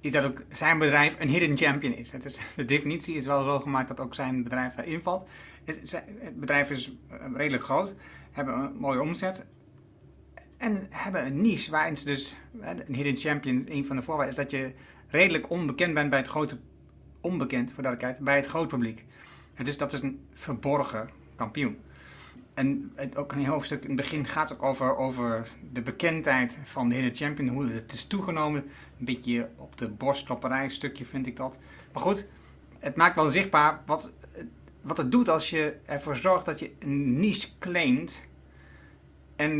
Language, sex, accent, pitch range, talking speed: Dutch, male, Dutch, 125-150 Hz, 175 wpm